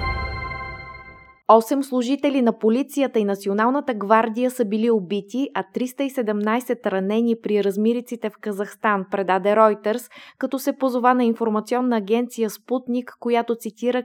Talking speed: 120 wpm